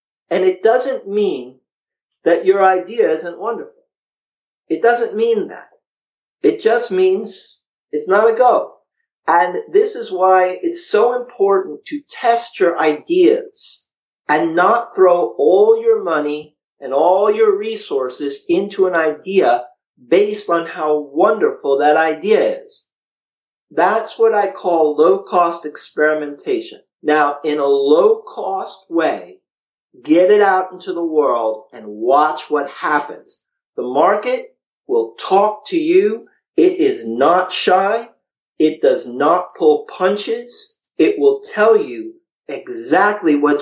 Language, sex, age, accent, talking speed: English, male, 50-69, American, 130 wpm